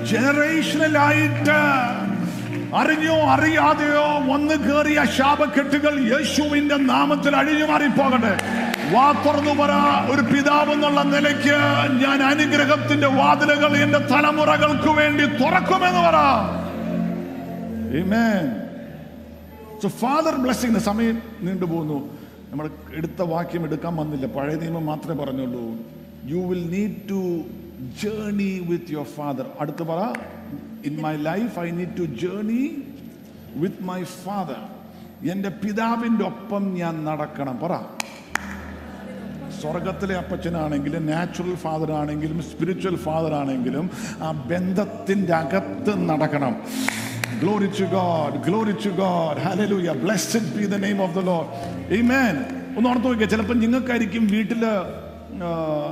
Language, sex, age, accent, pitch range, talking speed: English, male, 50-69, Indian, 170-270 Hz, 115 wpm